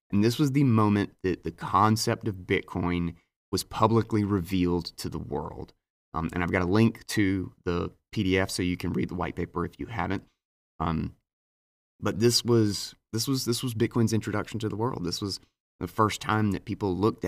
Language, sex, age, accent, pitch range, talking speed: English, male, 30-49, American, 90-105 Hz, 195 wpm